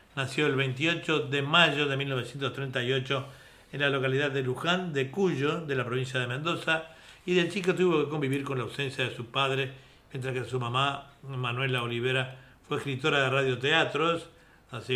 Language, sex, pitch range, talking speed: Spanish, male, 125-155 Hz, 170 wpm